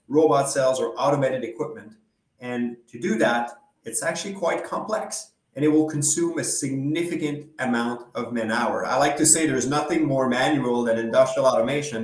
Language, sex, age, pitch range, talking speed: English, male, 30-49, 120-155 Hz, 165 wpm